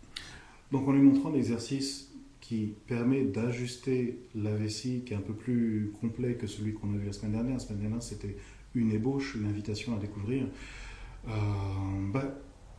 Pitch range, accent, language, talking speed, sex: 105-125 Hz, French, French, 170 wpm, male